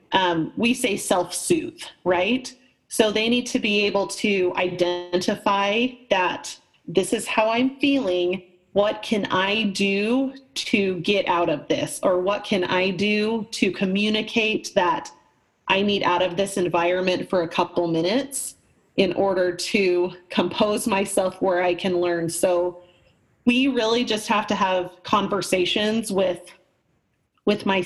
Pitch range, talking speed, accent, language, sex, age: 180-220 Hz, 140 wpm, American, English, female, 30-49